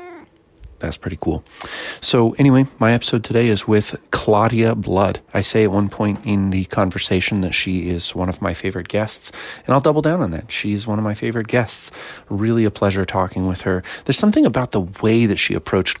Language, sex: English, male